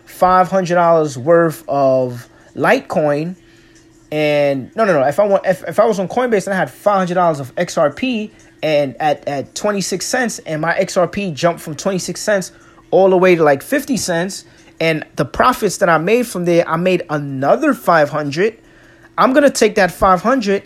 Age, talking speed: 30-49, 170 wpm